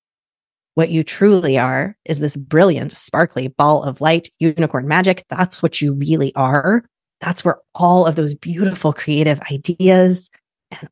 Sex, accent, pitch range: female, American, 150-180 Hz